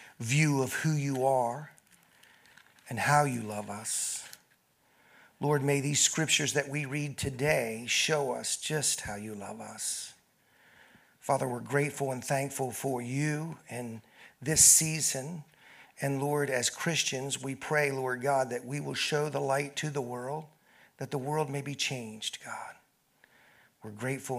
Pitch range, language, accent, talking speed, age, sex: 130-185 Hz, English, American, 150 wpm, 50-69, male